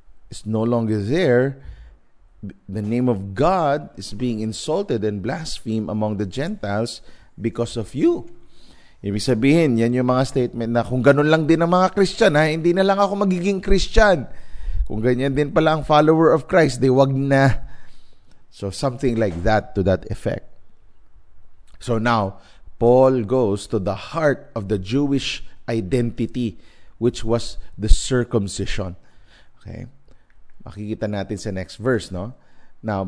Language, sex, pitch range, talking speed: English, male, 100-140 Hz, 145 wpm